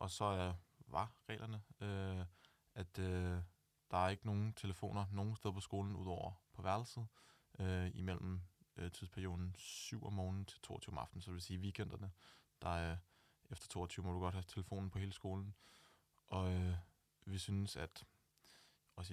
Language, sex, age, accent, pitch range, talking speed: Danish, male, 20-39, native, 90-100 Hz, 170 wpm